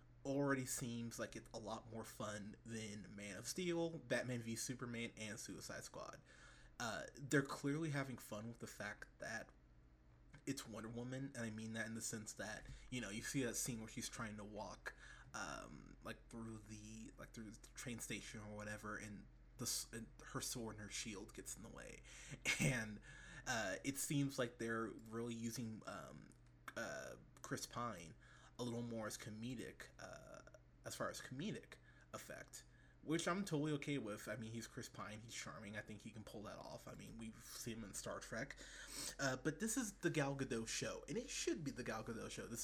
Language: English